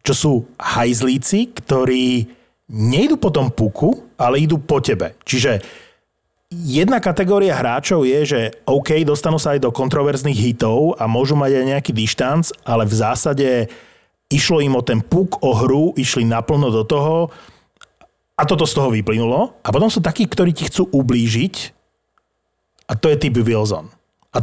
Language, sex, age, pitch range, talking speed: Slovak, male, 30-49, 125-160 Hz, 155 wpm